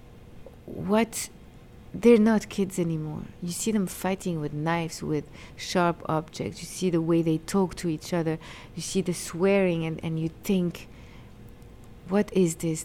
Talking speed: 160 wpm